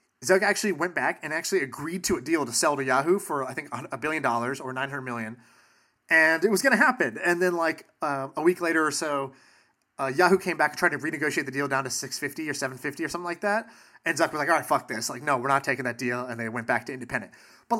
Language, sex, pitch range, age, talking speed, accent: English, male, 130-175 Hz, 30-49, 265 wpm, American